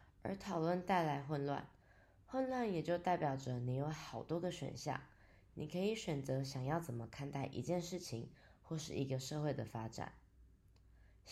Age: 20-39